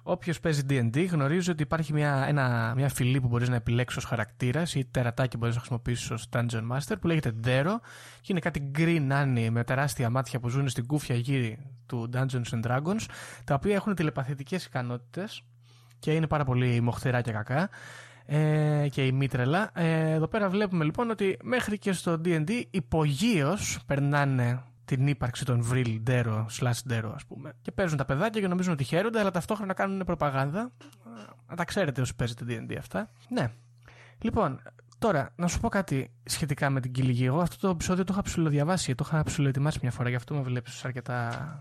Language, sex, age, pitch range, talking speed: Greek, male, 20-39, 120-160 Hz, 180 wpm